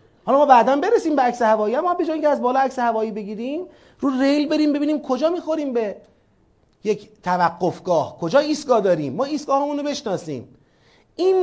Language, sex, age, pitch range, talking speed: Persian, male, 30-49, 180-255 Hz, 170 wpm